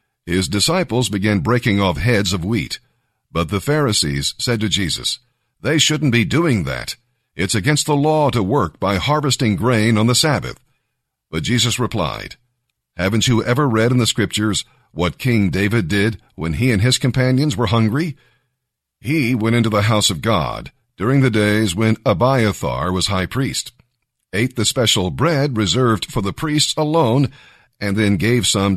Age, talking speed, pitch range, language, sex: 50-69, 165 wpm, 105-130 Hz, English, male